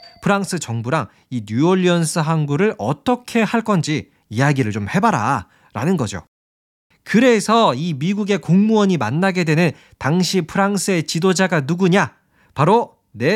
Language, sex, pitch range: Korean, male, 140-210 Hz